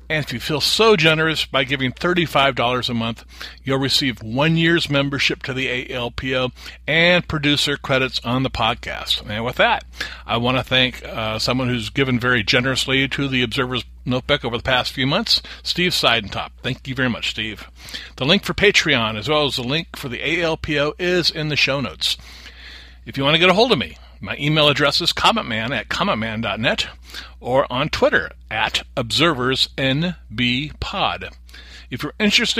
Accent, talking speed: American, 175 wpm